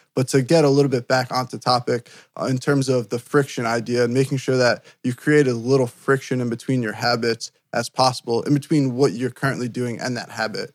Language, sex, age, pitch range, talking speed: English, male, 20-39, 120-135 Hz, 225 wpm